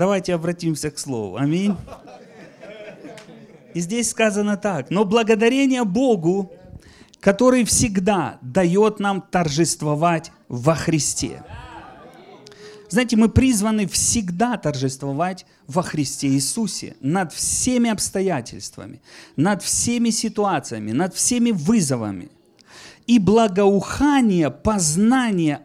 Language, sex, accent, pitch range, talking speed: Russian, male, native, 160-225 Hz, 90 wpm